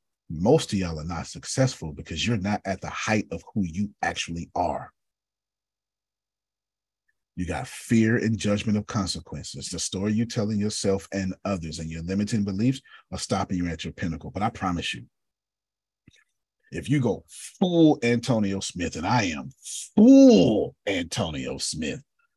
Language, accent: English, American